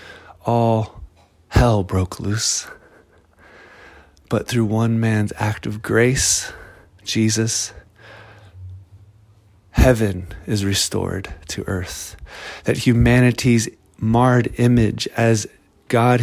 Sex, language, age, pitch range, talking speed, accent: male, English, 30-49, 105-125 Hz, 85 wpm, American